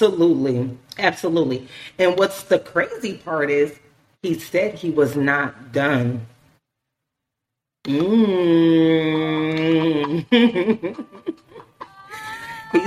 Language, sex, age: English, female, 30-49